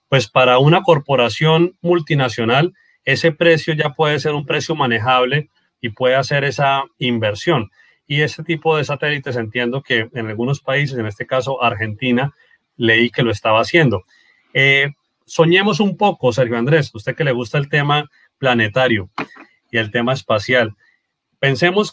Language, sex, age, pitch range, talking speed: Spanish, male, 30-49, 120-155 Hz, 150 wpm